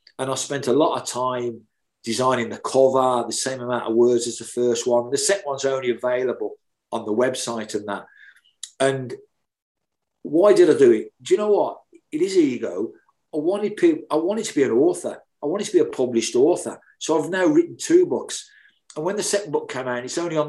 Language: English